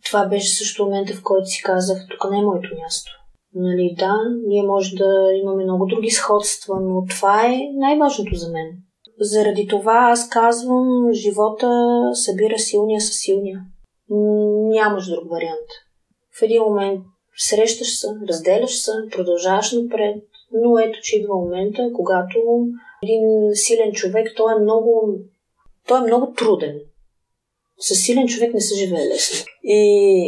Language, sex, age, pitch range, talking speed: Bulgarian, female, 30-49, 190-235 Hz, 140 wpm